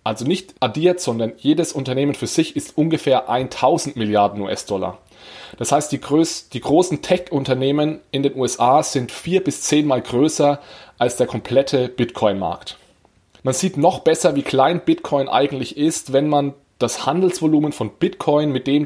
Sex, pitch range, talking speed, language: male, 125-155 Hz, 155 wpm, German